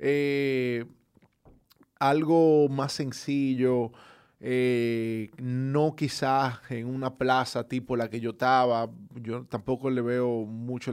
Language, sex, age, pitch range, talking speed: Spanish, male, 20-39, 115-140 Hz, 110 wpm